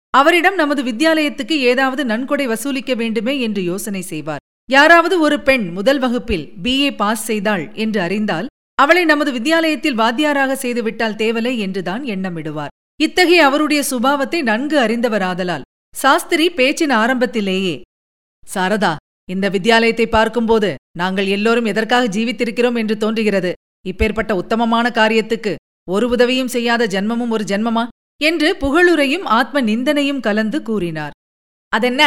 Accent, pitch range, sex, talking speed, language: native, 215-290 Hz, female, 120 wpm, Tamil